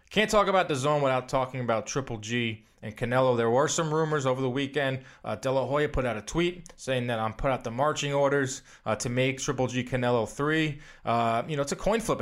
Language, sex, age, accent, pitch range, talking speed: English, male, 20-39, American, 115-145 Hz, 240 wpm